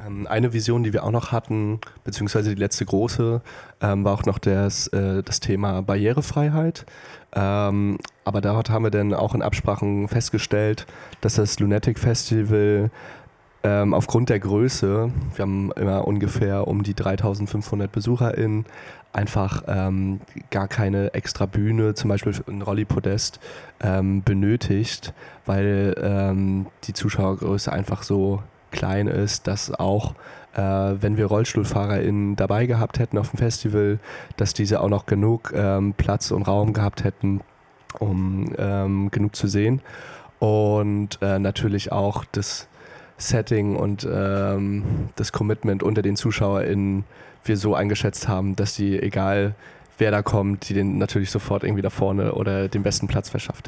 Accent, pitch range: German, 100-110 Hz